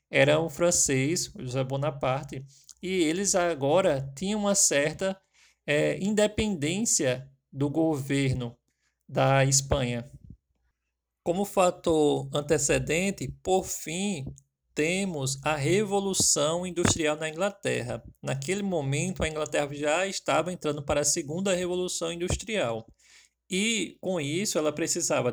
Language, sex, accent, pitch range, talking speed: Portuguese, male, Brazilian, 135-180 Hz, 105 wpm